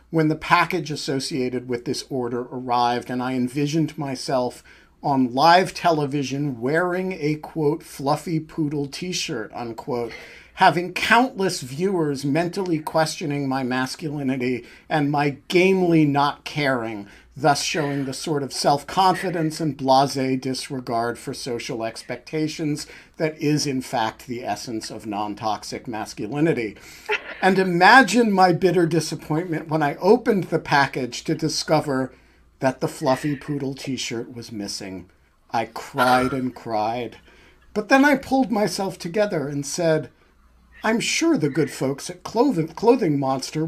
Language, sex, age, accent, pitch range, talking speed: English, male, 50-69, American, 125-170 Hz, 130 wpm